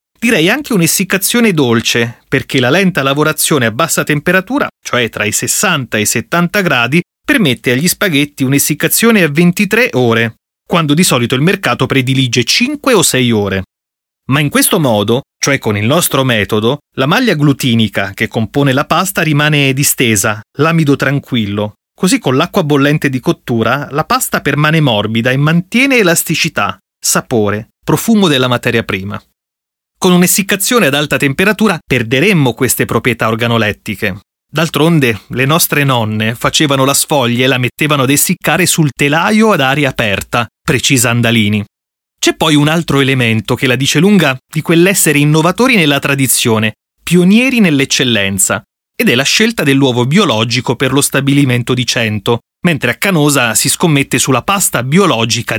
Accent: native